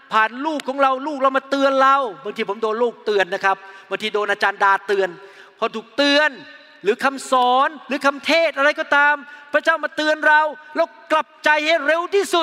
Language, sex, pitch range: Thai, male, 230-300 Hz